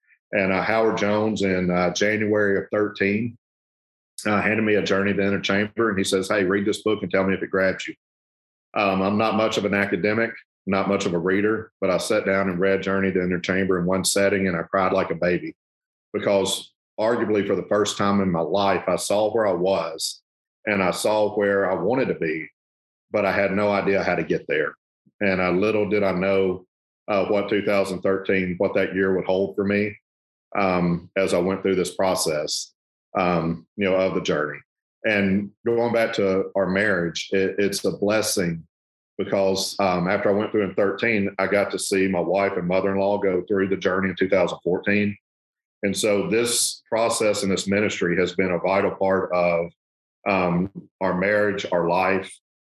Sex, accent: male, American